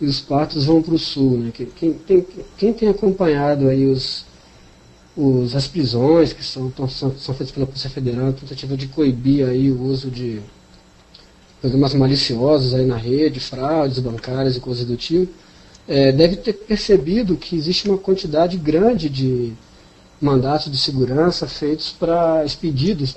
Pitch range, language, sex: 130-160 Hz, Portuguese, male